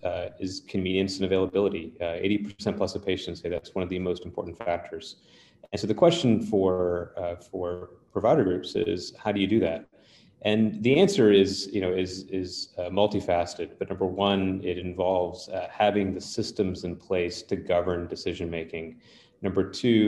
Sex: male